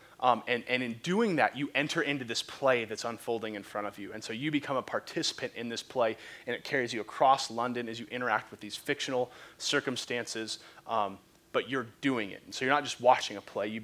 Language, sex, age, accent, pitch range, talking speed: English, male, 30-49, American, 115-165 Hz, 230 wpm